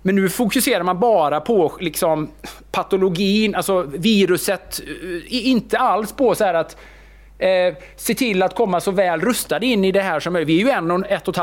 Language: English